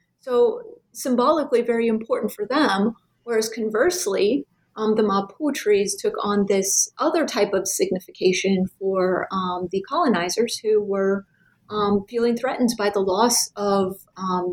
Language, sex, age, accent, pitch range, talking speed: English, female, 30-49, American, 195-235 Hz, 135 wpm